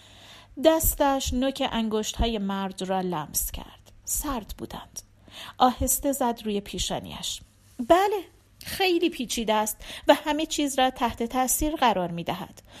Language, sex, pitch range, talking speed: Persian, female, 175-275 Hz, 115 wpm